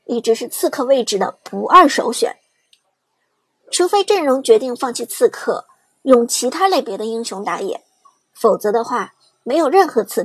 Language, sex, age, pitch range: Chinese, male, 50-69, 235-360 Hz